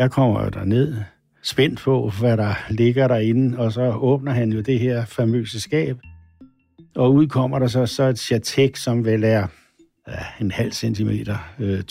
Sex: male